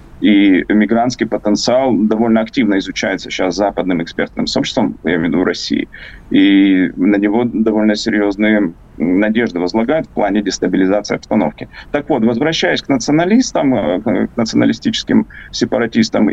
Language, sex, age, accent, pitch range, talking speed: Russian, male, 30-49, native, 110-170 Hz, 125 wpm